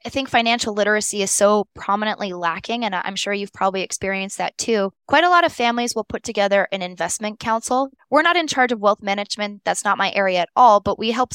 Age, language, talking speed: 10-29, English, 225 wpm